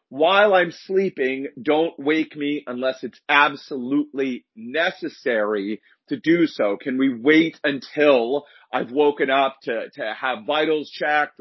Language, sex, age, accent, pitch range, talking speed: English, male, 40-59, American, 140-180 Hz, 130 wpm